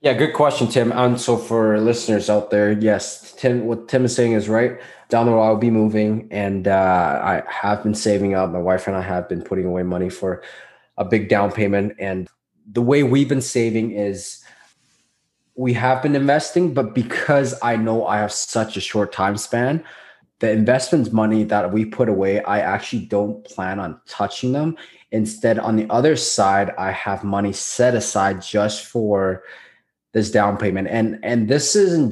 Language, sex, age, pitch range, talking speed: English, male, 20-39, 100-120 Hz, 190 wpm